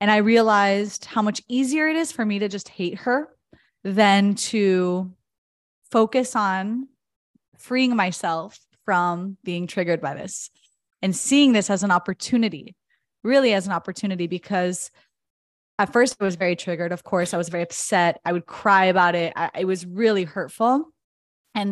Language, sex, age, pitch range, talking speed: English, female, 20-39, 185-225 Hz, 165 wpm